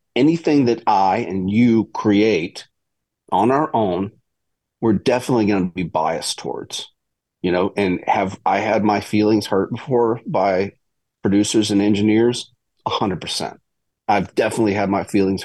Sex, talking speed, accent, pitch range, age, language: male, 140 wpm, American, 95-120 Hz, 40-59, English